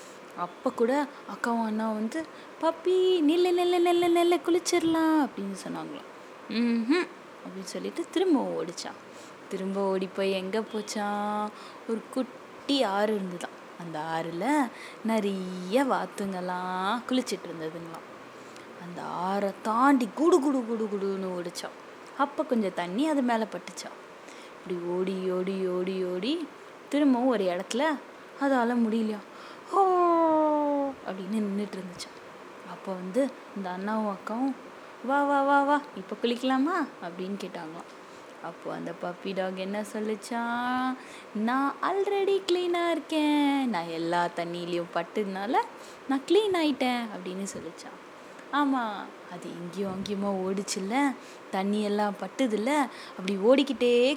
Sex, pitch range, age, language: female, 195-285 Hz, 20-39, Tamil